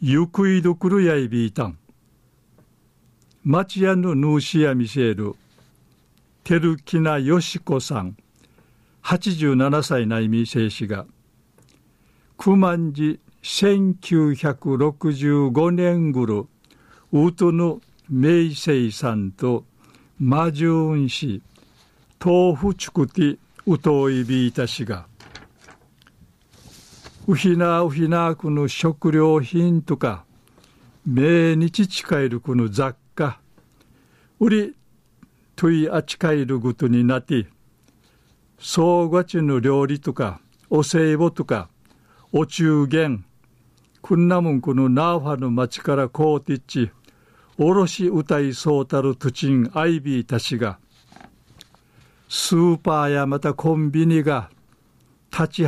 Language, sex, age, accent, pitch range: Japanese, male, 60-79, native, 130-170 Hz